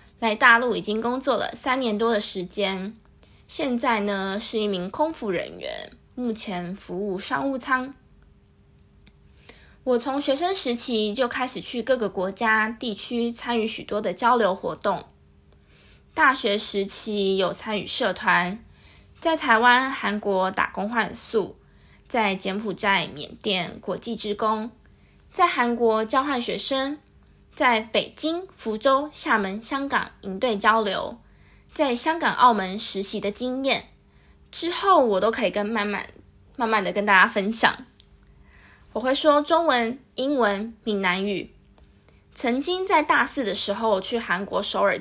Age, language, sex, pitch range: 20-39, Chinese, female, 195-255 Hz